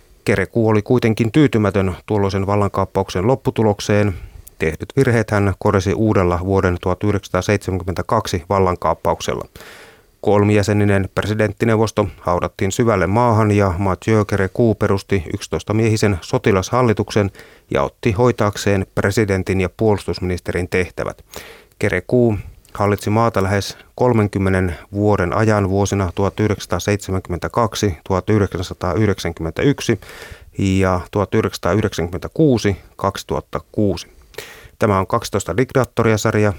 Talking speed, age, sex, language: 80 wpm, 30-49, male, Finnish